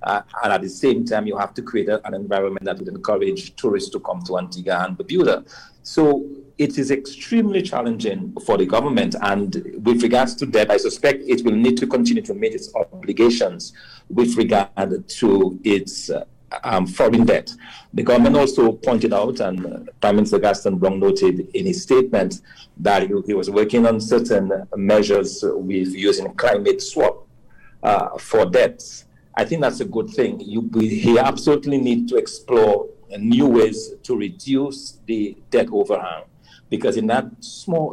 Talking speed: 170 wpm